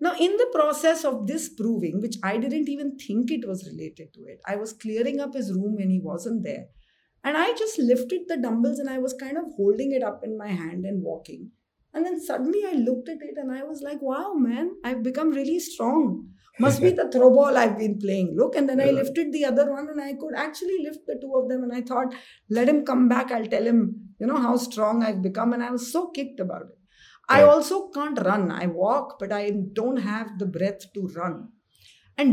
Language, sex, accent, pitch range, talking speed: English, female, Indian, 200-280 Hz, 230 wpm